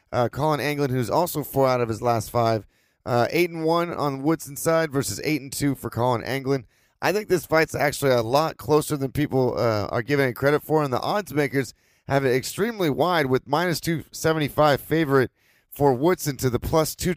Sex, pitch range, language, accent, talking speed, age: male, 120-150 Hz, English, American, 215 wpm, 30-49